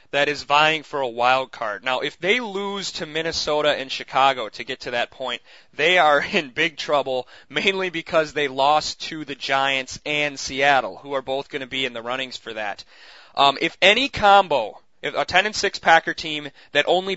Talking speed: 195 wpm